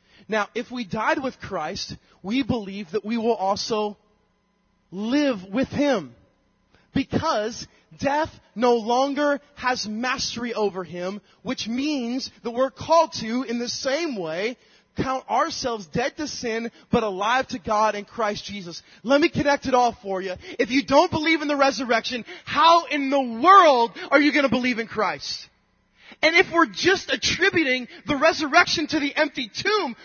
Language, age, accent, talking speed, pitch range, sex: English, 30-49, American, 160 wpm, 230-305 Hz, male